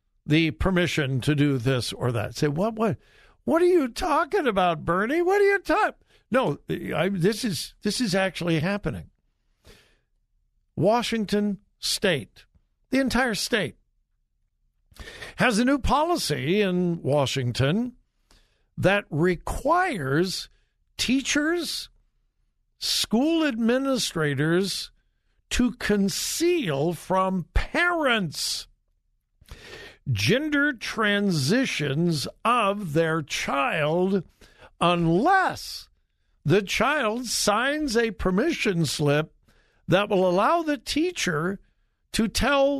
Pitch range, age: 150-250 Hz, 60-79